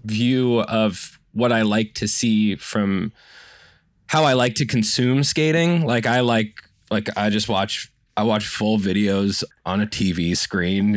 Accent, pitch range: American, 105-135 Hz